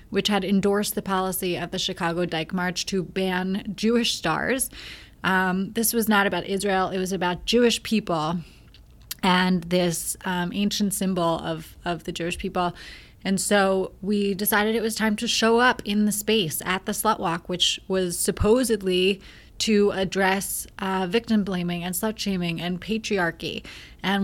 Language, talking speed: English, 165 wpm